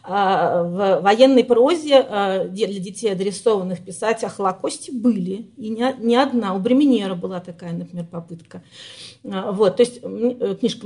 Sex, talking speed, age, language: female, 120 wpm, 40-59, Russian